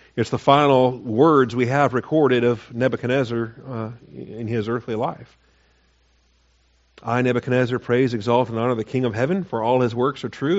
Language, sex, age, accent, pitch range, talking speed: English, male, 50-69, American, 110-130 Hz, 170 wpm